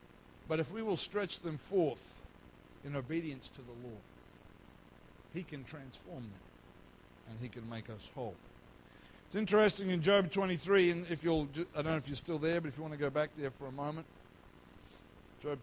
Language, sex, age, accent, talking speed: English, male, 60-79, Australian, 190 wpm